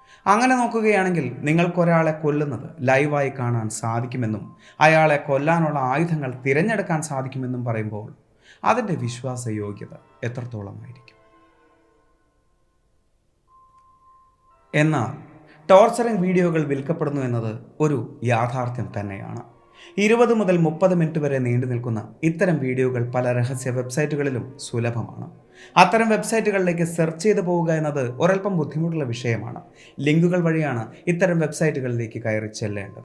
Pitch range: 120-175 Hz